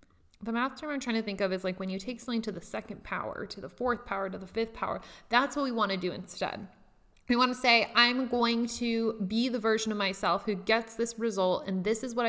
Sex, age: female, 20-39